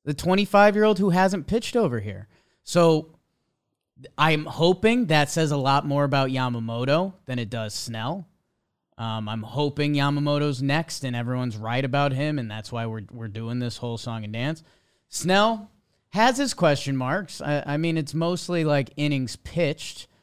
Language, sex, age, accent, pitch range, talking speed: English, male, 30-49, American, 120-160 Hz, 165 wpm